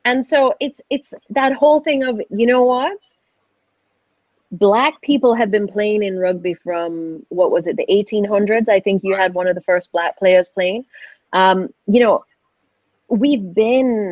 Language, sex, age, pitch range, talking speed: English, female, 30-49, 180-235 Hz, 170 wpm